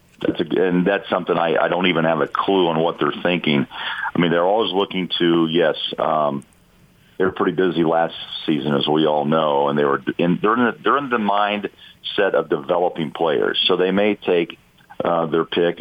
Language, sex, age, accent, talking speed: English, male, 50-69, American, 205 wpm